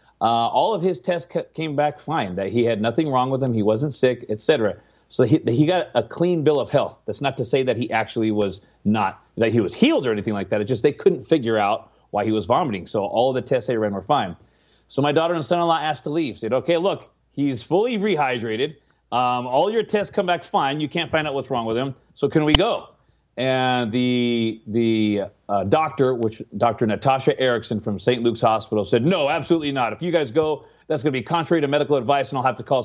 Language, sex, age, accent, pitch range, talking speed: English, male, 30-49, American, 115-150 Hz, 240 wpm